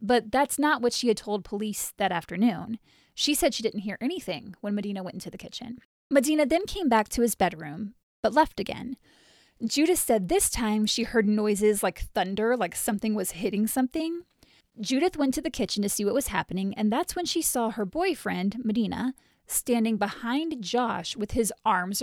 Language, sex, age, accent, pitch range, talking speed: English, female, 20-39, American, 210-260 Hz, 190 wpm